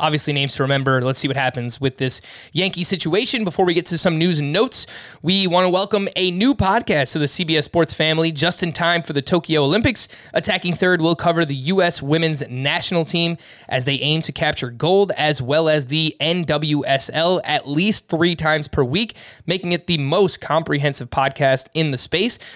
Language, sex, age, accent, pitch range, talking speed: English, male, 20-39, American, 145-185 Hz, 195 wpm